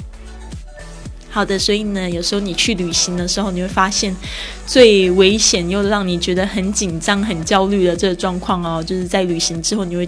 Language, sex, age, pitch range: Chinese, female, 20-39, 170-200 Hz